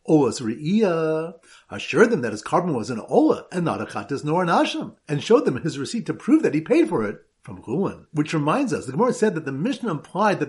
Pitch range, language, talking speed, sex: 145-205 Hz, English, 230 wpm, male